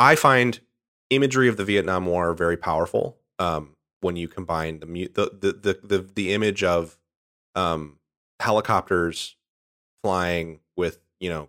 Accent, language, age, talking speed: American, English, 30-49, 145 wpm